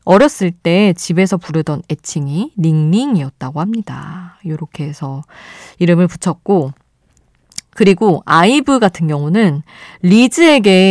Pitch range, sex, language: 160-215 Hz, female, Korean